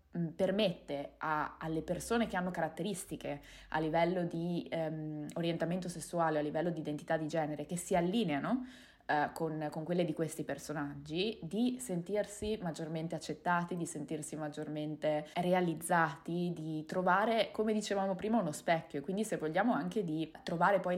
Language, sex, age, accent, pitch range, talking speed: Italian, female, 20-39, native, 155-175 Hz, 150 wpm